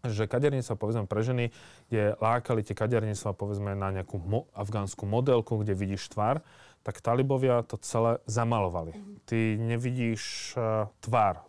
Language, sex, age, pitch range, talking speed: Slovak, male, 30-49, 100-120 Hz, 130 wpm